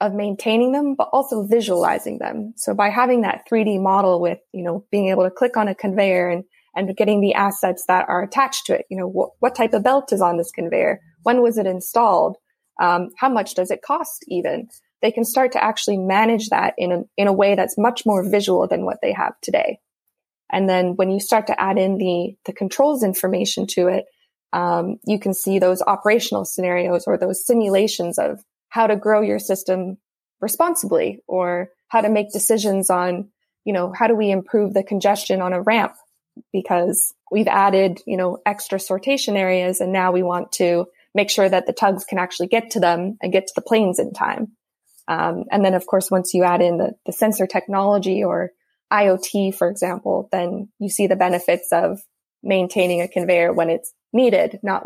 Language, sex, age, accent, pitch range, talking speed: English, female, 20-39, American, 180-220 Hz, 200 wpm